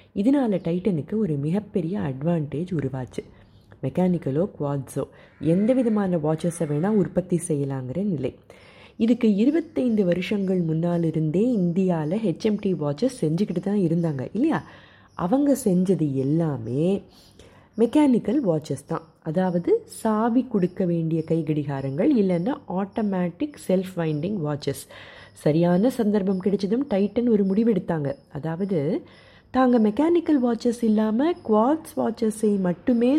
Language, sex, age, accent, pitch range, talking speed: Tamil, female, 30-49, native, 155-215 Hz, 100 wpm